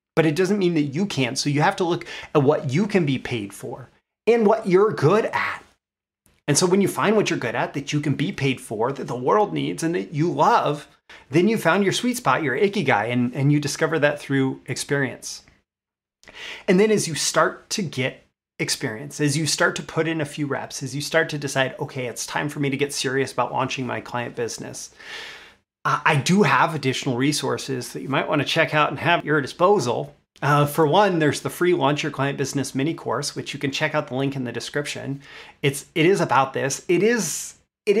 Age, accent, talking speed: 30-49, American, 225 wpm